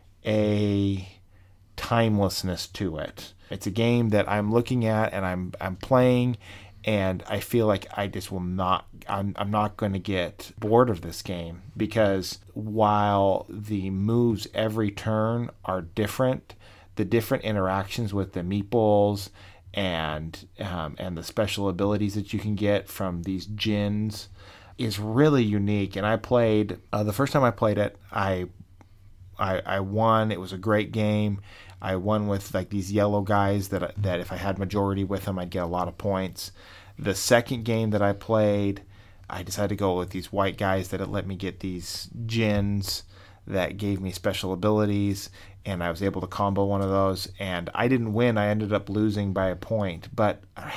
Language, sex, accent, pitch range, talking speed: English, male, American, 95-105 Hz, 180 wpm